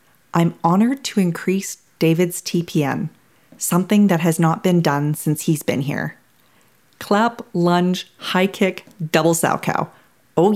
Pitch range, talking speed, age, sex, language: 150-185 Hz, 135 wpm, 40-59, female, English